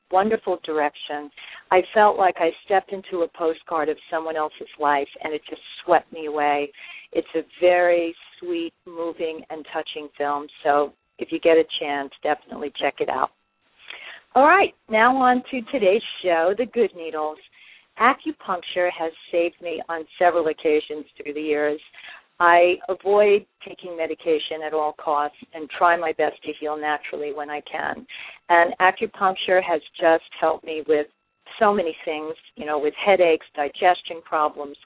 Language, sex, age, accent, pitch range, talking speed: English, female, 50-69, American, 155-185 Hz, 155 wpm